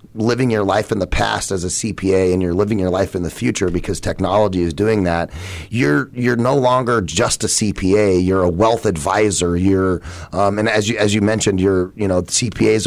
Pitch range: 90-110 Hz